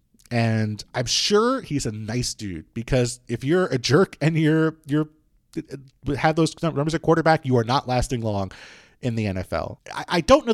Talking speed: 190 wpm